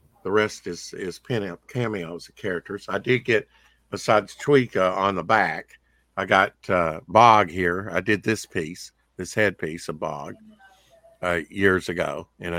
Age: 60-79